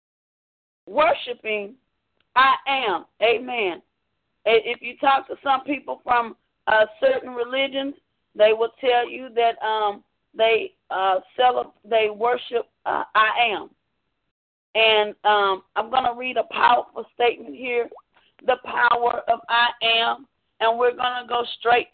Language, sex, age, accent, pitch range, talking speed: English, female, 40-59, American, 235-310 Hz, 130 wpm